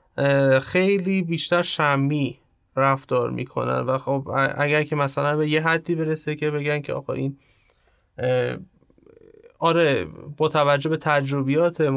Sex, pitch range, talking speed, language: male, 135-165 Hz, 115 wpm, Persian